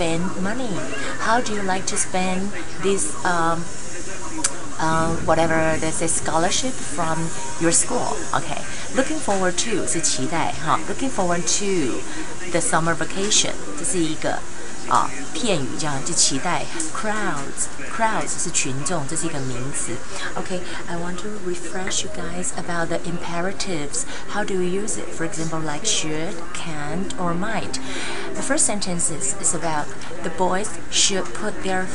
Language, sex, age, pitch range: Chinese, female, 30-49, 160-195 Hz